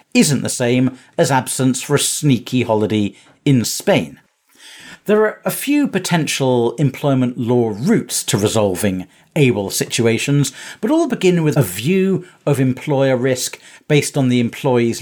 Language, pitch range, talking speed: English, 125-160 Hz, 145 wpm